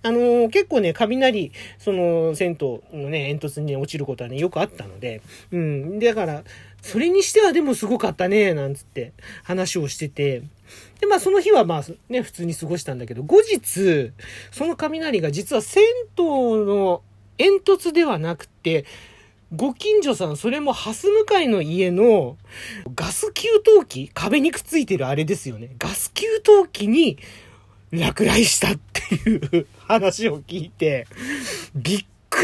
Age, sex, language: 40-59, male, Japanese